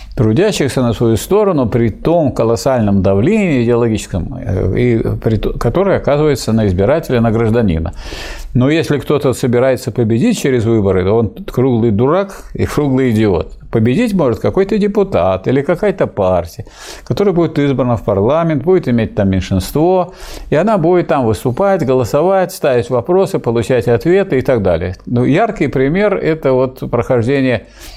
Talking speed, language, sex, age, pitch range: 135 wpm, Russian, male, 50-69, 105-140 Hz